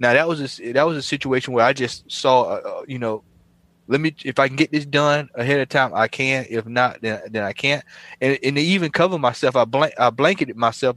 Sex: male